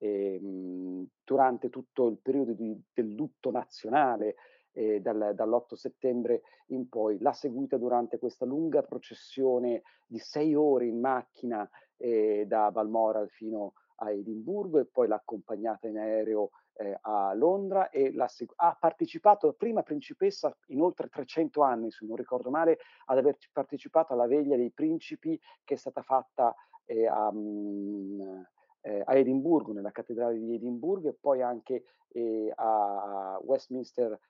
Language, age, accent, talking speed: Italian, 40-59, native, 140 wpm